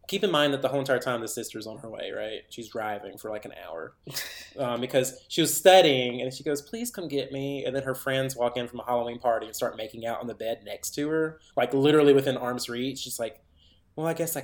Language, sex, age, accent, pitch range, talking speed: English, male, 20-39, American, 135-225 Hz, 260 wpm